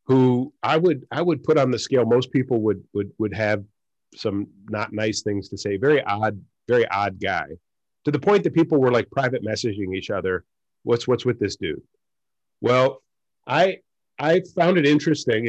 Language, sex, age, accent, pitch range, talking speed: English, male, 50-69, American, 105-130 Hz, 185 wpm